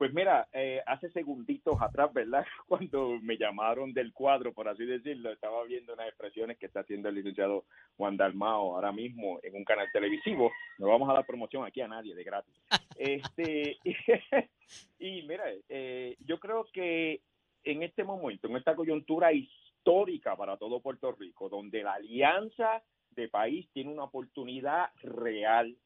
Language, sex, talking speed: Spanish, male, 160 wpm